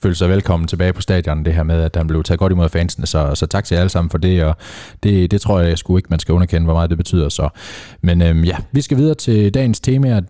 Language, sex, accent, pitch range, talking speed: Danish, male, native, 85-105 Hz, 305 wpm